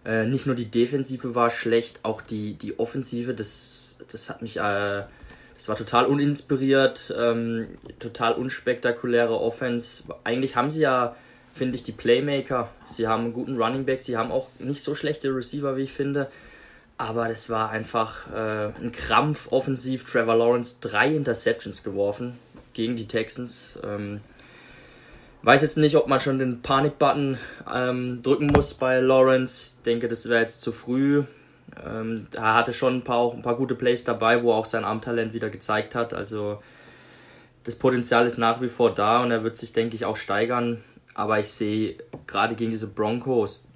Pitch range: 110-130 Hz